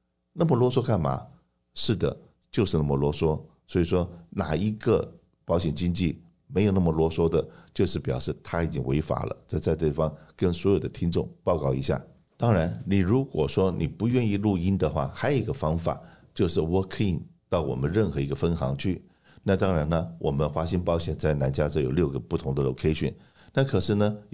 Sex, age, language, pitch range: male, 50-69, Chinese, 75-95 Hz